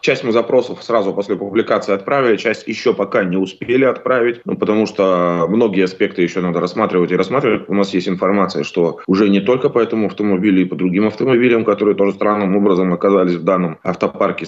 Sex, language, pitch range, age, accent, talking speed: male, Russian, 95-120 Hz, 20-39, native, 190 wpm